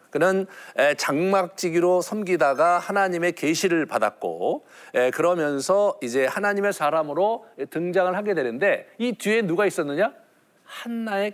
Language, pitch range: Korean, 150-215 Hz